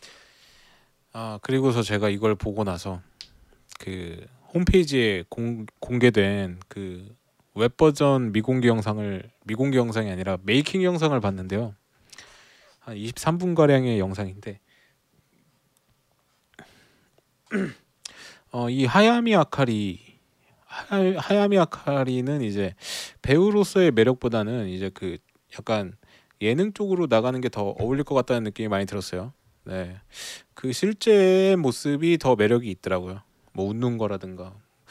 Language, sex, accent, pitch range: Korean, male, native, 100-140 Hz